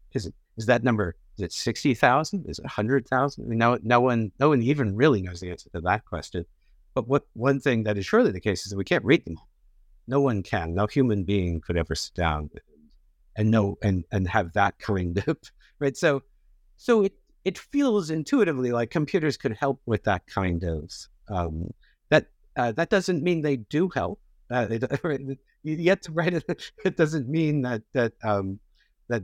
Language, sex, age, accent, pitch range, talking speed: English, male, 60-79, American, 90-135 Hz, 205 wpm